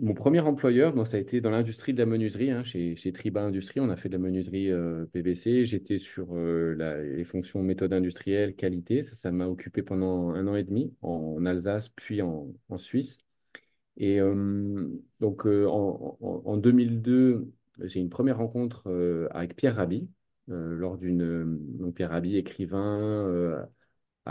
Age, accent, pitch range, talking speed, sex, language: 30-49, French, 90-115 Hz, 180 wpm, male, French